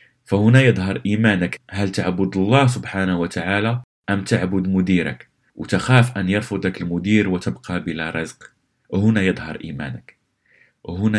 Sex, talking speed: male, 120 wpm